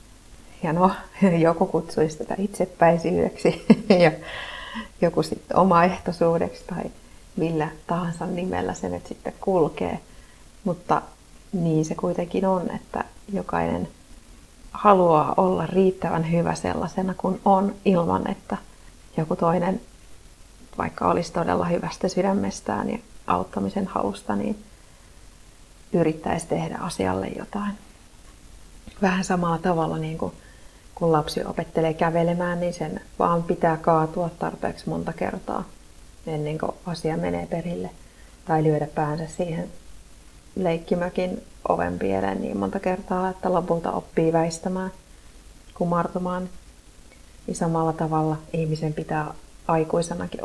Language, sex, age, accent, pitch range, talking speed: Finnish, female, 30-49, native, 155-185 Hz, 105 wpm